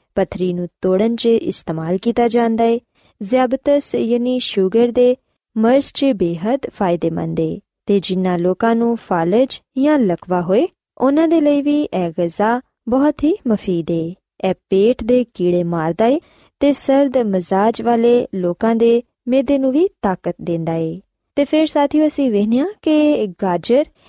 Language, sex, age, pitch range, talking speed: Punjabi, female, 20-39, 185-265 Hz, 130 wpm